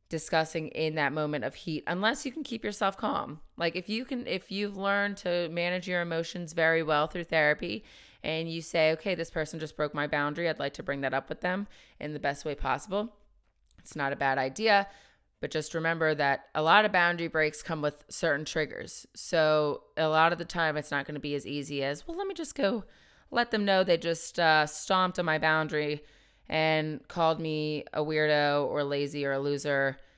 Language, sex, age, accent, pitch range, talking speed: English, female, 20-39, American, 145-175 Hz, 215 wpm